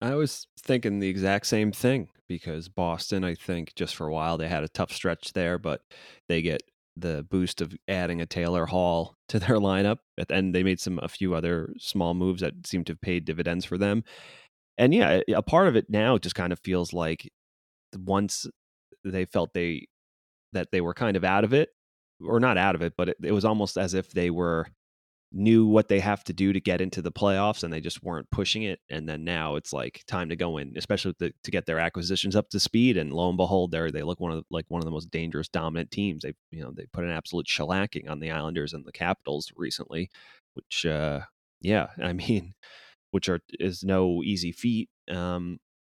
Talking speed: 220 wpm